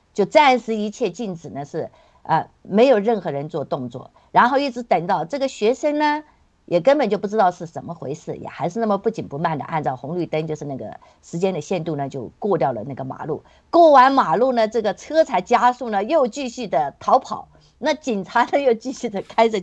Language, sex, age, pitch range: Chinese, female, 50-69, 160-235 Hz